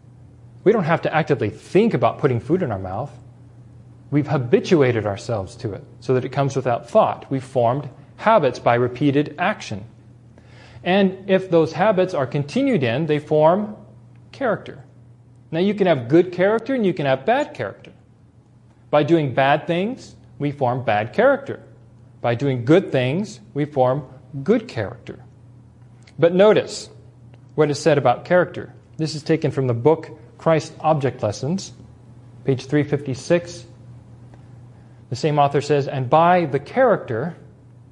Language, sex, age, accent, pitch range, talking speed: English, male, 40-59, American, 120-155 Hz, 145 wpm